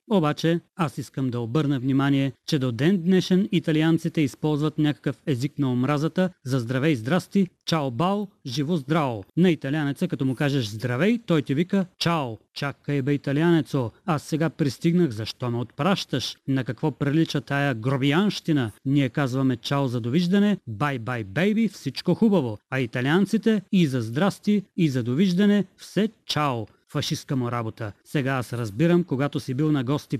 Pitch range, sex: 135-175 Hz, male